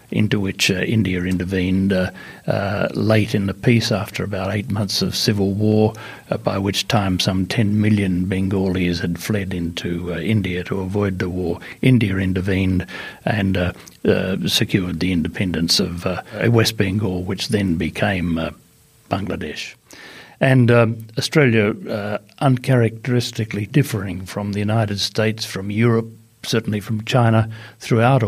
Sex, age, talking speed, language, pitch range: male, 60-79, 145 wpm, English, 95-115 Hz